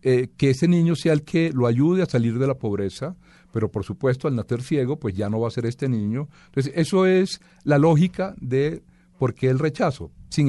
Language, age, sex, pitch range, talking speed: Spanish, 40-59, male, 115-145 Hz, 225 wpm